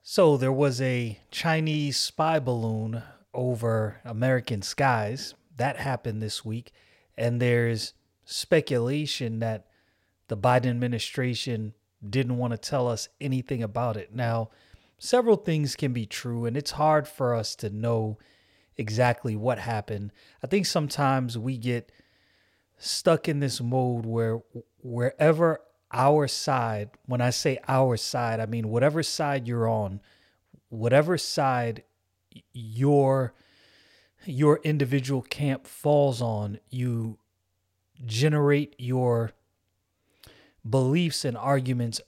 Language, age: English, 30-49